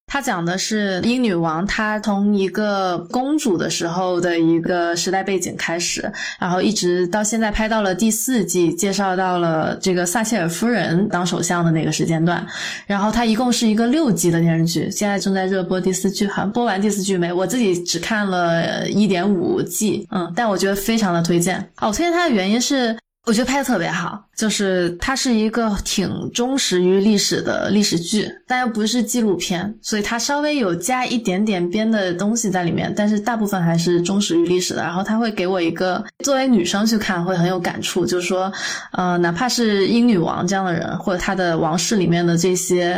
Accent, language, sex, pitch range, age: native, Chinese, female, 175-215 Hz, 20-39